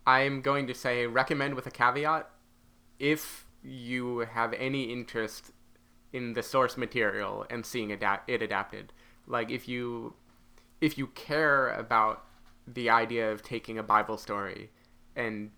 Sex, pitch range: male, 110-125 Hz